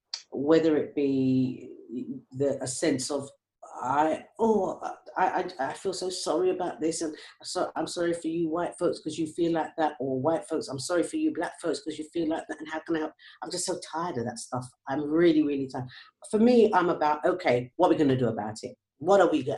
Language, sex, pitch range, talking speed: English, female, 130-165 Hz, 235 wpm